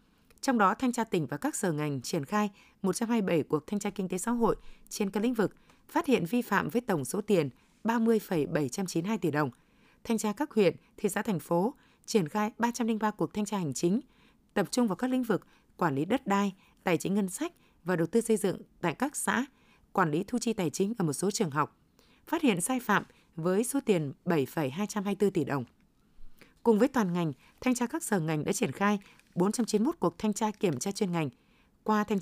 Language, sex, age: Vietnamese, female, 20-39